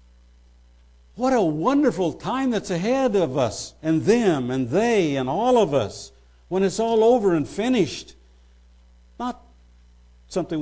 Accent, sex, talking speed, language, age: American, male, 135 wpm, English, 60-79